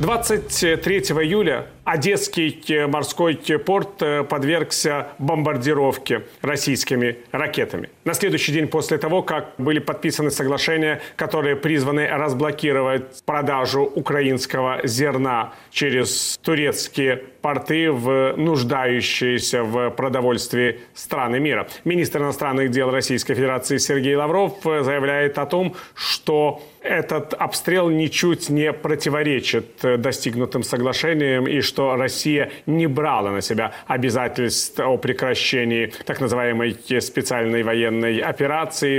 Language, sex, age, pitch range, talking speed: Russian, male, 40-59, 130-155 Hz, 100 wpm